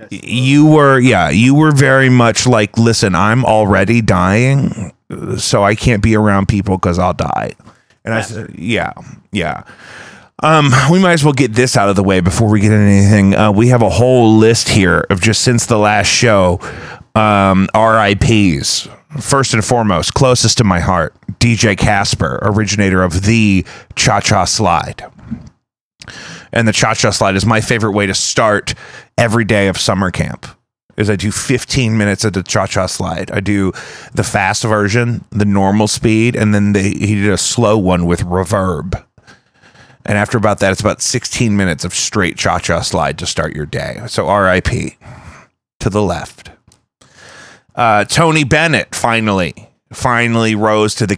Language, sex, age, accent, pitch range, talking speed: English, male, 30-49, American, 95-120 Hz, 165 wpm